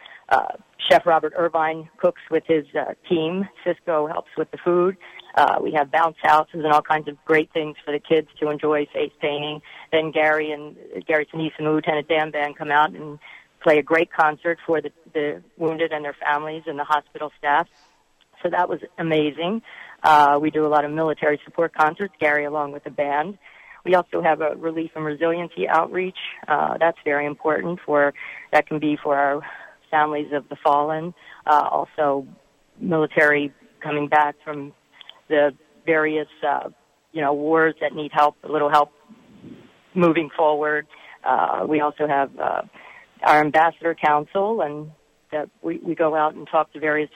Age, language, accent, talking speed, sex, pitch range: 40-59, English, American, 175 wpm, female, 150-160 Hz